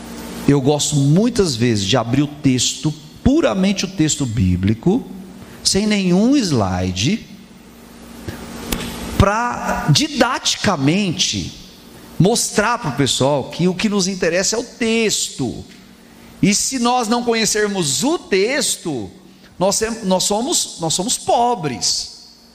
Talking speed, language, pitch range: 105 wpm, Portuguese, 165-235 Hz